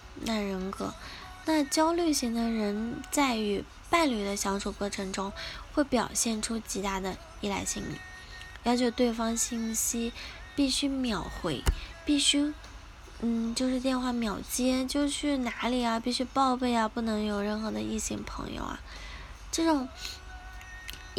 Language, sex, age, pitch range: Chinese, female, 10-29, 200-260 Hz